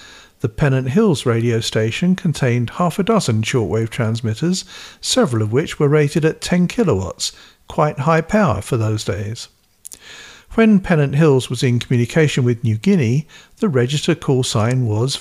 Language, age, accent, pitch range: English, 50-69, British, 120-160 Hz